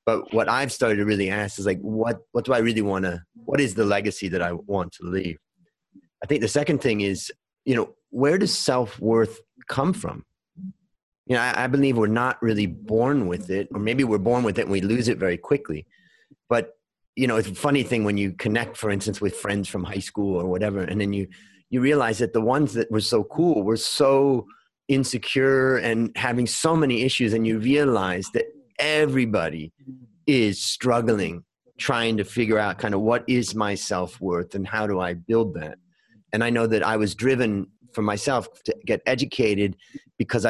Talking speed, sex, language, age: 205 wpm, male, English, 30-49